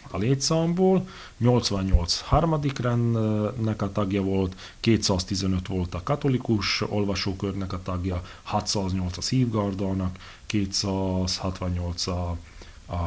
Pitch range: 95-115 Hz